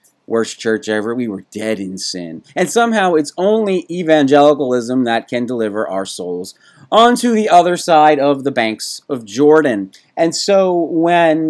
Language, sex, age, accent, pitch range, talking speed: English, male, 30-49, American, 135-185 Hz, 155 wpm